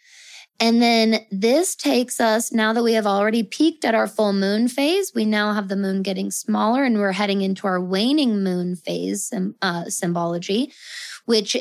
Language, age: English, 20-39